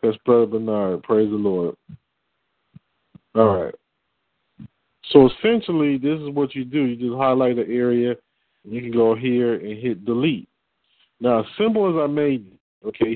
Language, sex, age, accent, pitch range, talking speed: English, male, 40-59, American, 115-140 Hz, 160 wpm